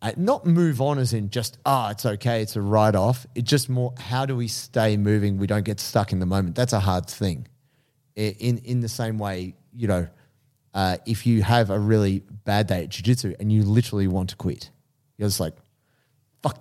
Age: 30-49